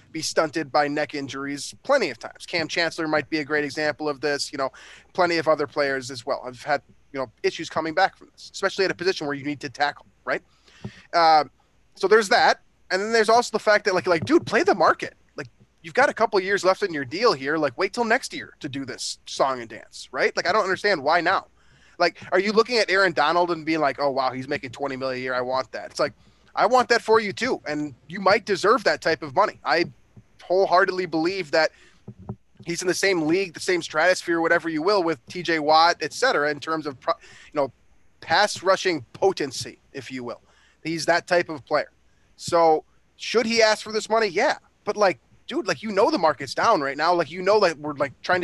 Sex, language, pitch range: male, English, 145-190 Hz